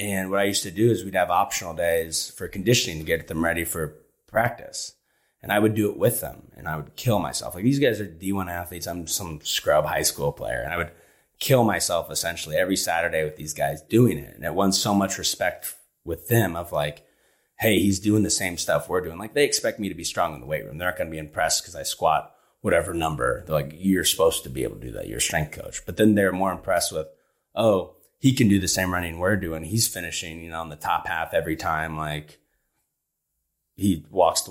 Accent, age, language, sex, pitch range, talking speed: American, 30-49, English, male, 80-105 Hz, 240 wpm